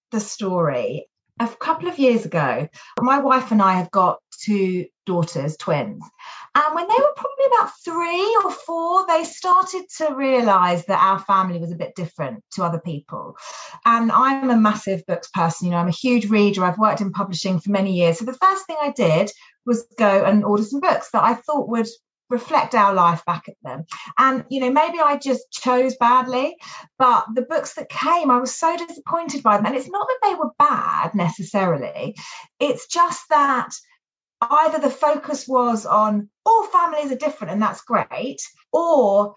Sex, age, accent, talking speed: female, 30-49, British, 185 wpm